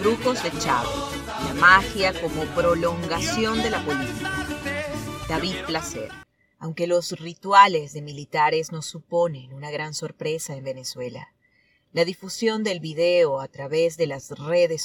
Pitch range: 150-185 Hz